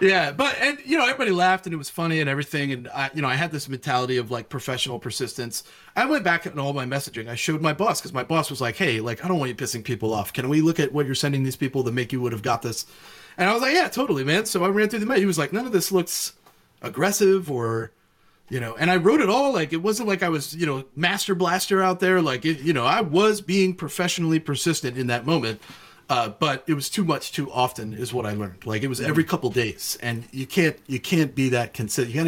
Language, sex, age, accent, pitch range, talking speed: English, male, 30-49, American, 120-175 Hz, 275 wpm